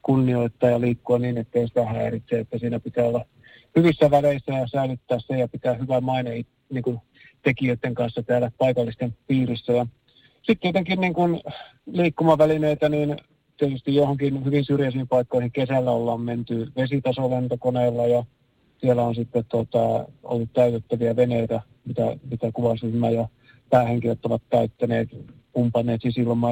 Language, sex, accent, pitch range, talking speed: Finnish, male, native, 120-140 Hz, 130 wpm